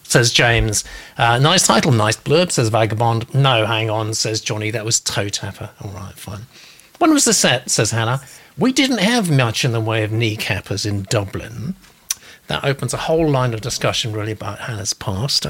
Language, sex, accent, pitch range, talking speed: English, male, British, 115-165 Hz, 185 wpm